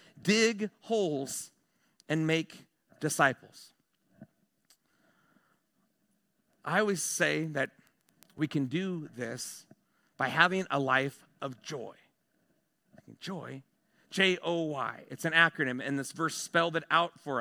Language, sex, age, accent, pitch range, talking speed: English, male, 40-59, American, 165-215 Hz, 105 wpm